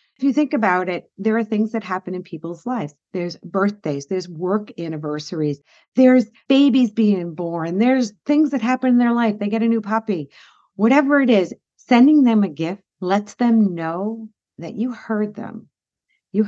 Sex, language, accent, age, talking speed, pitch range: female, English, American, 50-69, 180 wpm, 170-225 Hz